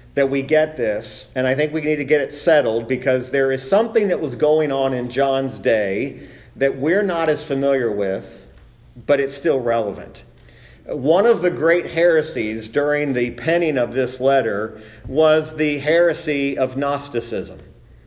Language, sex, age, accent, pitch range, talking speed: English, male, 40-59, American, 120-150 Hz, 165 wpm